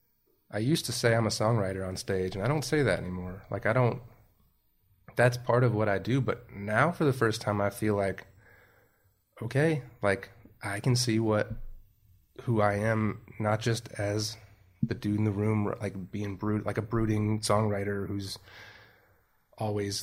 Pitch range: 100-115 Hz